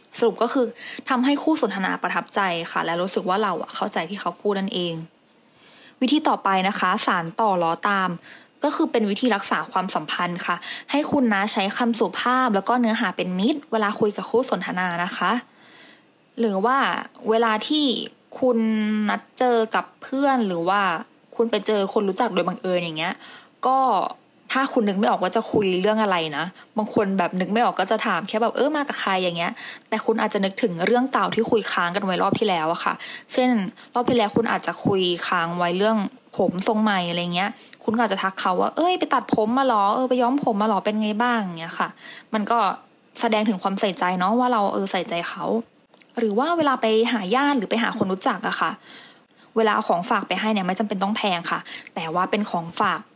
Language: English